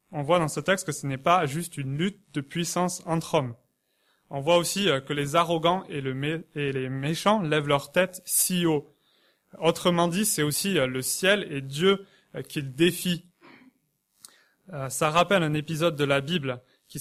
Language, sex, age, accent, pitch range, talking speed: French, male, 20-39, French, 145-175 Hz, 175 wpm